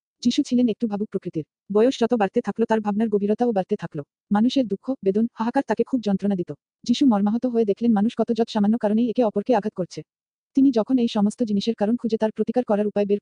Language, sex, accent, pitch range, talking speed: Bengali, female, native, 205-235 Hz, 155 wpm